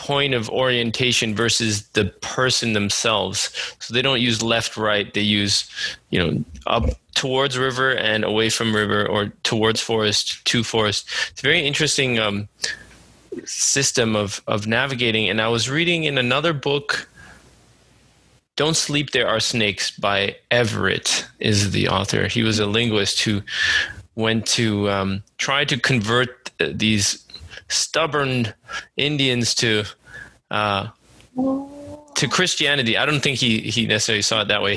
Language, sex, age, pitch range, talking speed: English, male, 20-39, 110-130 Hz, 145 wpm